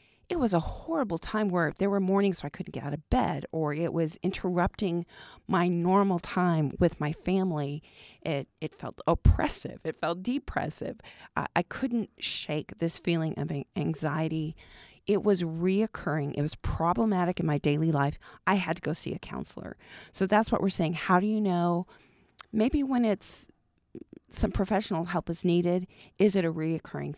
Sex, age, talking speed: female, 40-59, 170 wpm